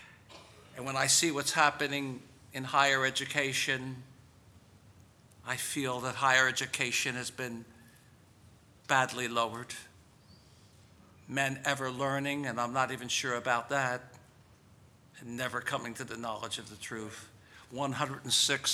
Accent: American